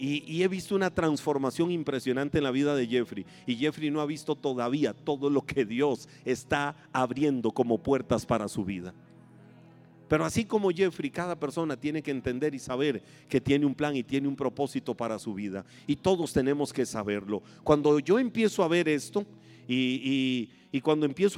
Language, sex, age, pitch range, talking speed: Spanish, male, 40-59, 140-185 Hz, 185 wpm